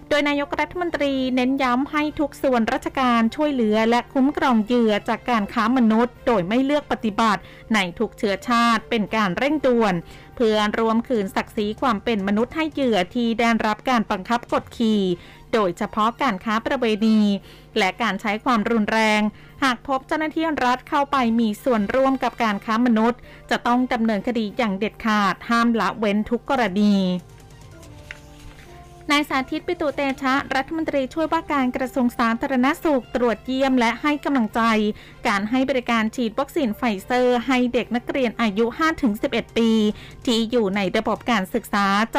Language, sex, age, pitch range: Thai, female, 20-39, 215-265 Hz